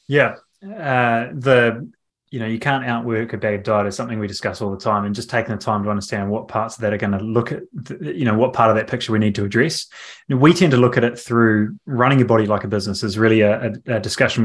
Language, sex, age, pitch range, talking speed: English, male, 20-39, 110-125 Hz, 270 wpm